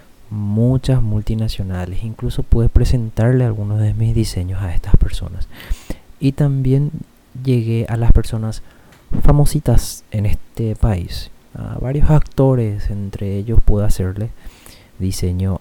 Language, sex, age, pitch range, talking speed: Spanish, male, 30-49, 95-120 Hz, 115 wpm